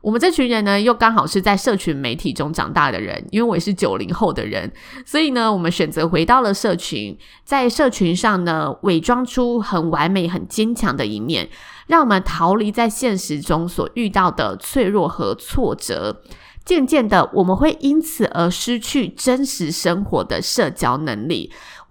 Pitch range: 180-245 Hz